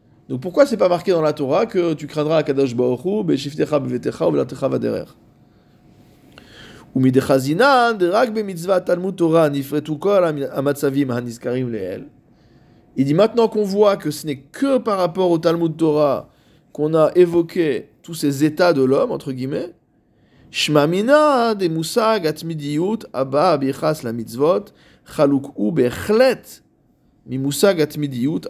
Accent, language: French, French